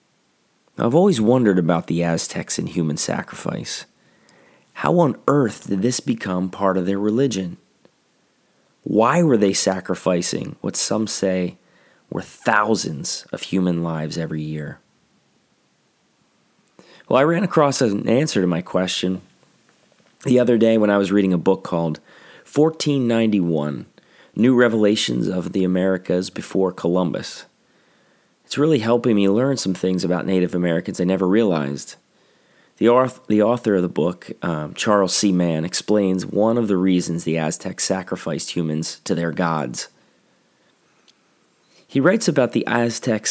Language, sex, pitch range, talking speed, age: English, male, 90-110 Hz, 140 wpm, 30-49